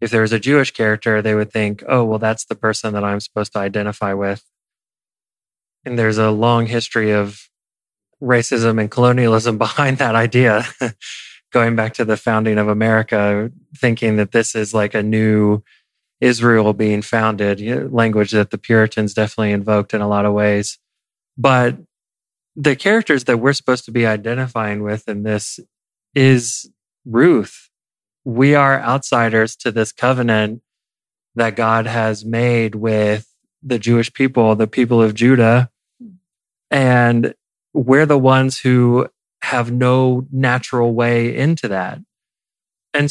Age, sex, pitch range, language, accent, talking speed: 20-39, male, 110-130 Hz, English, American, 145 wpm